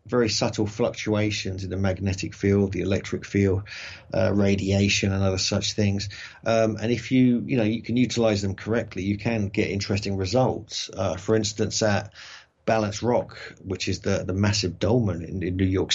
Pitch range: 100-110 Hz